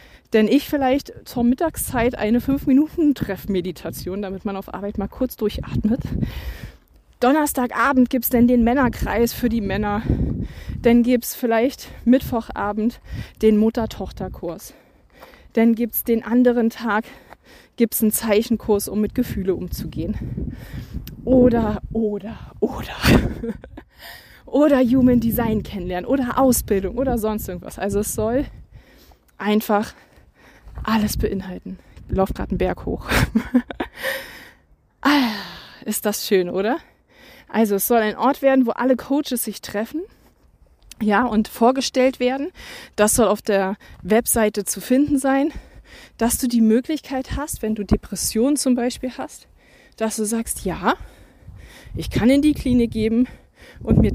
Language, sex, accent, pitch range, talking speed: German, female, German, 210-255 Hz, 130 wpm